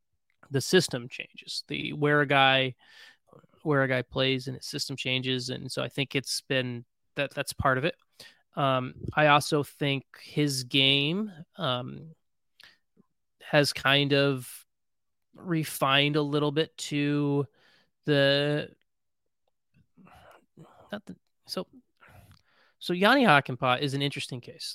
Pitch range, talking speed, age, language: 130-150 Hz, 125 wpm, 20-39, English